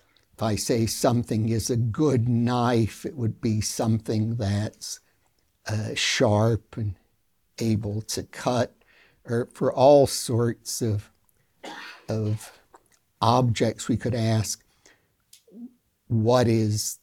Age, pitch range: 60-79, 105-125 Hz